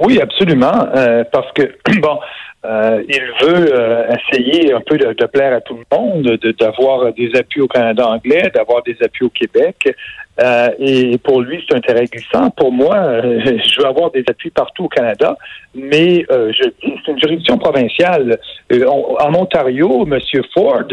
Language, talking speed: French, 180 wpm